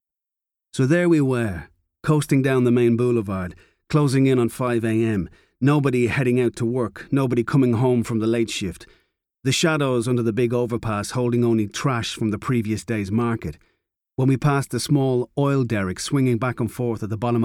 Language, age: English, 40-59